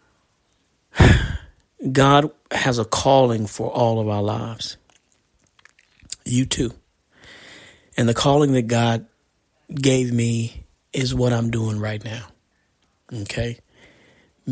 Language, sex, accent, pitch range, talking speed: English, male, American, 105-130 Hz, 105 wpm